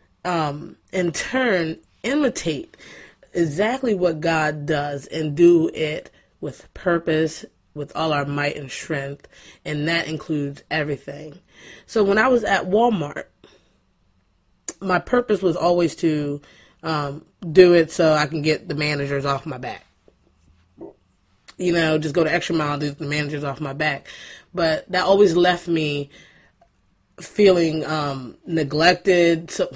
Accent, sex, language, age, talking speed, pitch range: American, female, English, 20-39, 135 wpm, 145-180 Hz